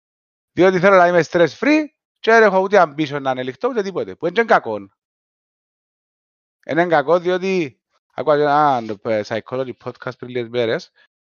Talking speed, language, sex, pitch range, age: 145 wpm, Greek, male, 110-150 Hz, 30-49